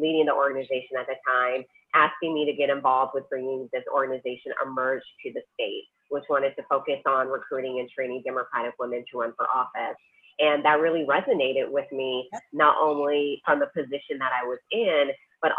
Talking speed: 190 wpm